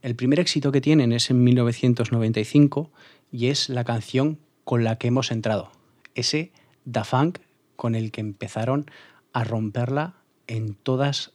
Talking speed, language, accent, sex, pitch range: 150 wpm, Spanish, Spanish, male, 115-130 Hz